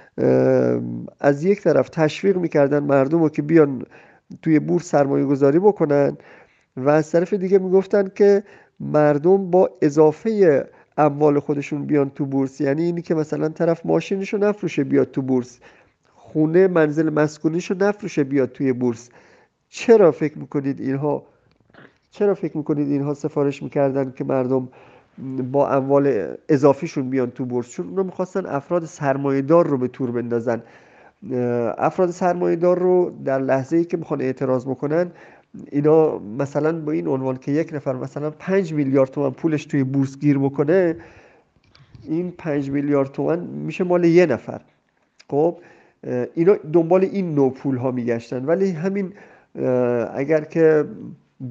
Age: 50-69